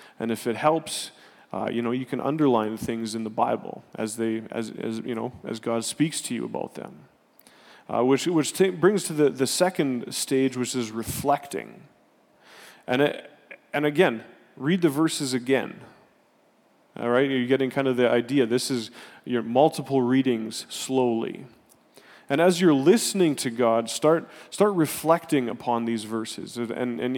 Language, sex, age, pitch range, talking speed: English, male, 30-49, 120-145 Hz, 170 wpm